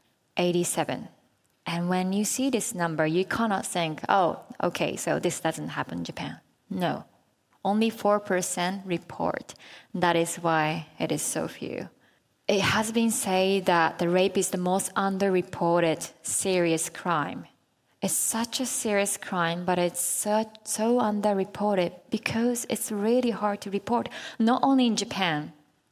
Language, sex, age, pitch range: Chinese, female, 20-39, 175-225 Hz